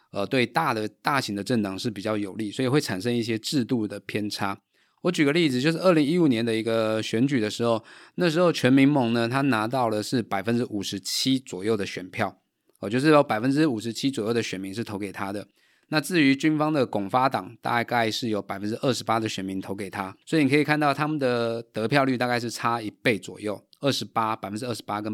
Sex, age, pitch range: male, 20-39, 105-135 Hz